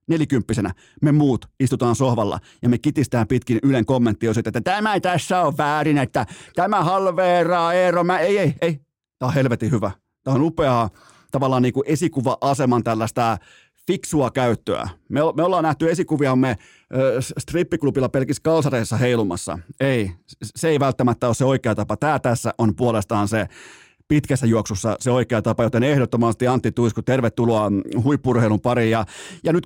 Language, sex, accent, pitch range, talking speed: Finnish, male, native, 115-155 Hz, 155 wpm